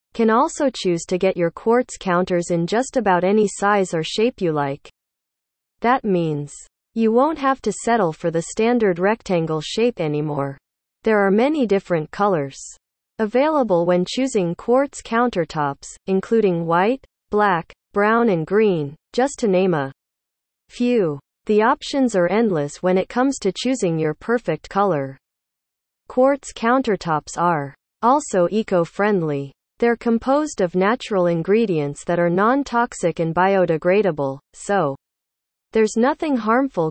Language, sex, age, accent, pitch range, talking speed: English, female, 40-59, American, 160-230 Hz, 135 wpm